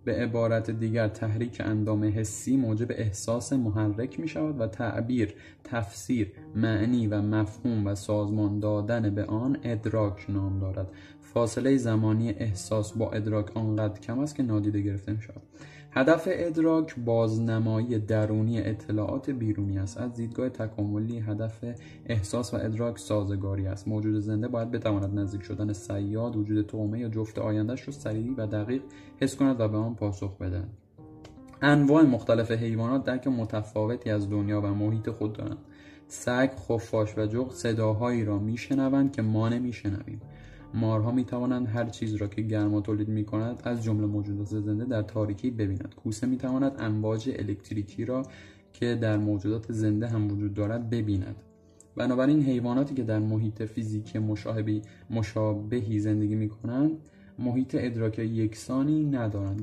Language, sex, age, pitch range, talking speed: Persian, male, 20-39, 105-120 Hz, 140 wpm